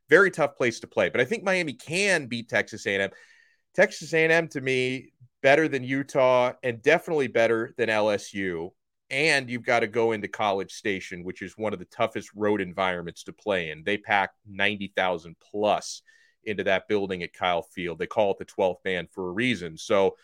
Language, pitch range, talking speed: English, 110-160 Hz, 195 wpm